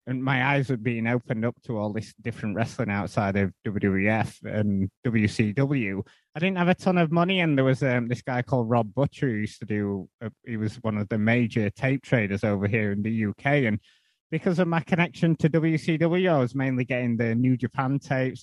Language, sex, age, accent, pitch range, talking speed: English, male, 20-39, British, 115-145 Hz, 210 wpm